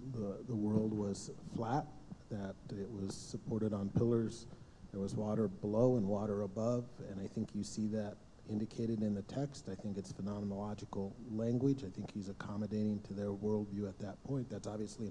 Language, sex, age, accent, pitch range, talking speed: English, male, 40-59, American, 105-120 Hz, 180 wpm